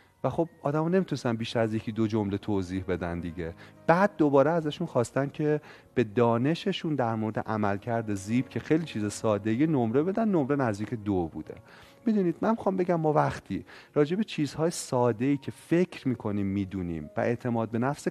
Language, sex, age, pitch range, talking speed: Persian, male, 30-49, 105-155 Hz, 170 wpm